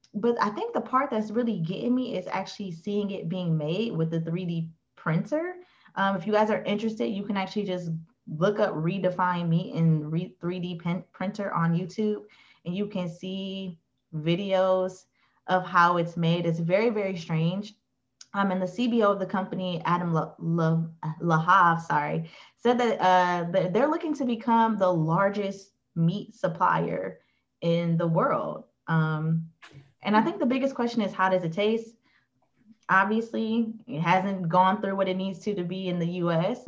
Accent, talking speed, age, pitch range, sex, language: American, 175 wpm, 20-39, 170-215 Hz, female, English